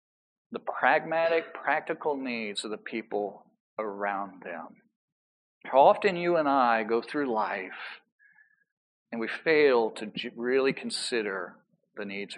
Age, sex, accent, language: 50-69, male, American, English